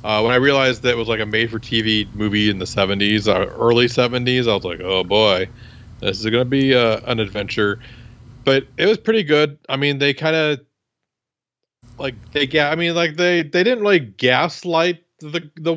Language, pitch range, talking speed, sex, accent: English, 110-140 Hz, 210 wpm, male, American